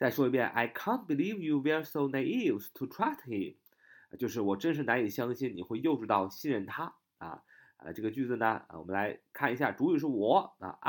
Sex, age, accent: male, 20-39, native